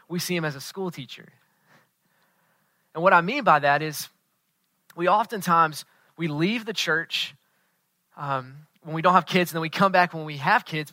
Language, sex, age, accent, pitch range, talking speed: English, male, 20-39, American, 160-190 Hz, 190 wpm